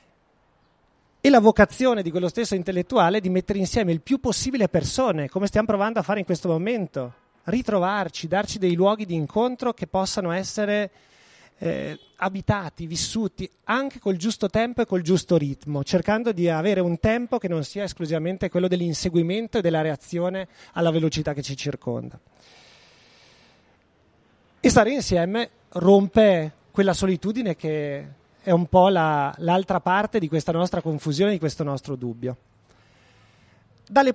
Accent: native